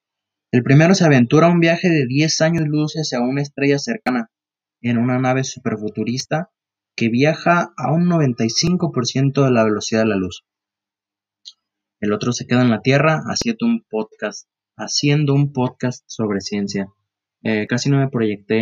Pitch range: 110-145 Hz